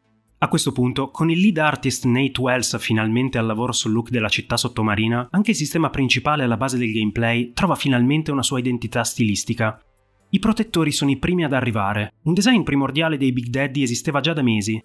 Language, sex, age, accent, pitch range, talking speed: Italian, male, 30-49, native, 120-150 Hz, 195 wpm